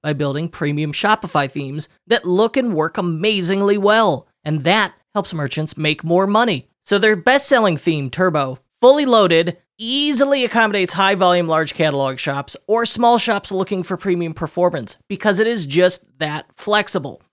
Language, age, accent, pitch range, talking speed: English, 30-49, American, 155-215 Hz, 155 wpm